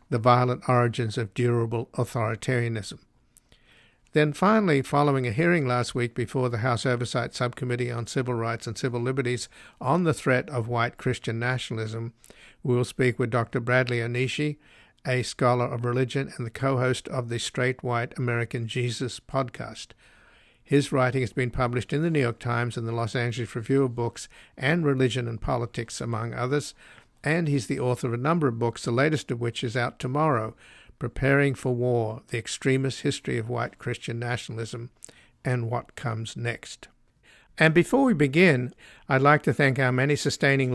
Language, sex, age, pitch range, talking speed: English, male, 60-79, 120-135 Hz, 170 wpm